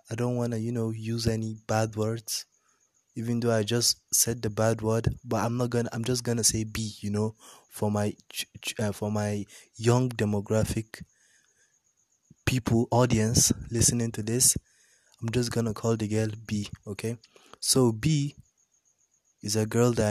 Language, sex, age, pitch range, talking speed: English, male, 20-39, 110-125 Hz, 160 wpm